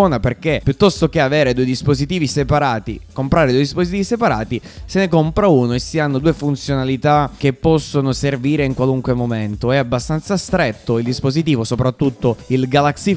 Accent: native